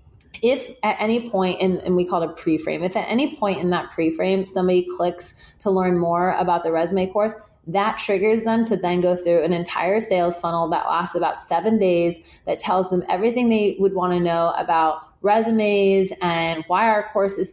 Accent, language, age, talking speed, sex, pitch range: American, English, 20-39, 200 wpm, female, 175-205 Hz